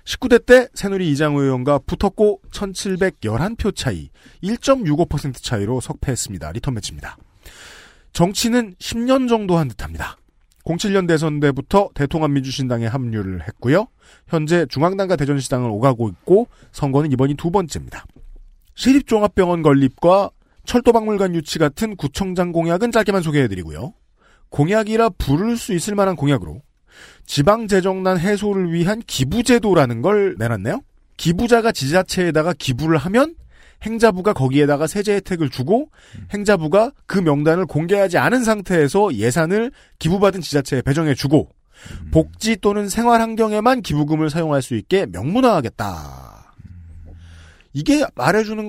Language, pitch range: Korean, 130-205 Hz